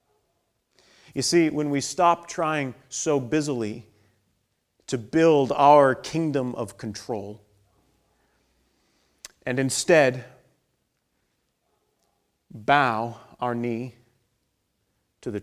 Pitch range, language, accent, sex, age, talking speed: 100-145 Hz, English, American, male, 30-49, 80 wpm